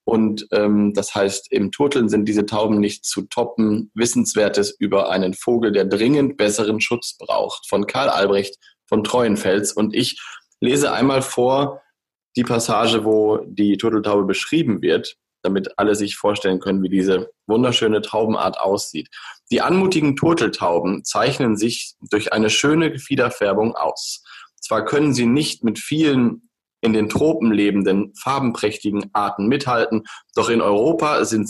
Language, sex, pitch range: German, male, 105-125 Hz